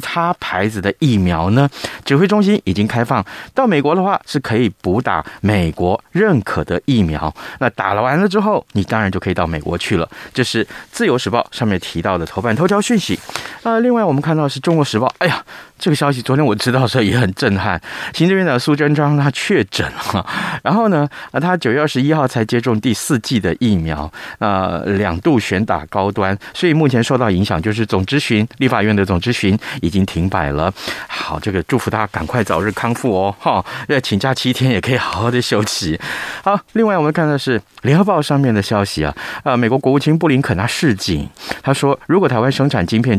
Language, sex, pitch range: Chinese, male, 95-140 Hz